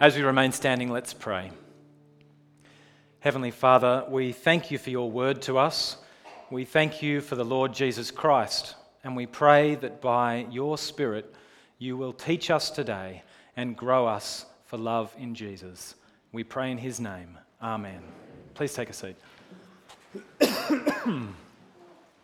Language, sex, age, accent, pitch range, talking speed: English, male, 30-49, Australian, 125-155 Hz, 145 wpm